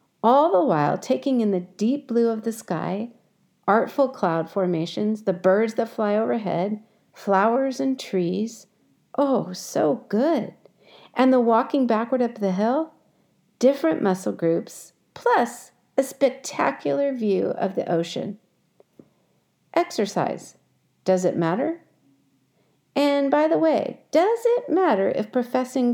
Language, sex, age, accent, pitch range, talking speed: English, female, 50-69, American, 200-280 Hz, 125 wpm